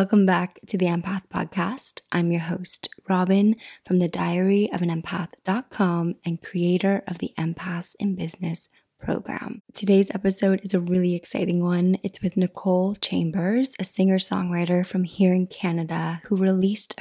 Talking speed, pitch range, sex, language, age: 150 wpm, 175-195 Hz, female, English, 20-39